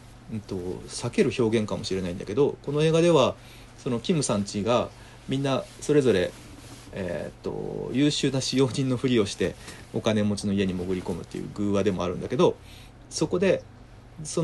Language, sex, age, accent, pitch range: Japanese, male, 30-49, native, 105-150 Hz